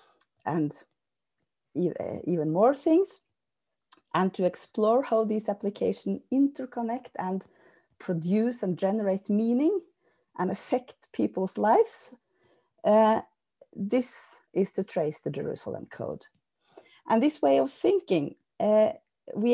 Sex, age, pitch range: female, 30-49, 190-265 Hz